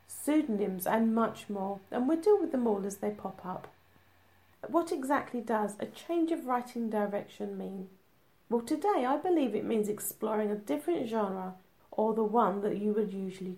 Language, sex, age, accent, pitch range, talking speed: English, female, 40-59, British, 195-255 Hz, 175 wpm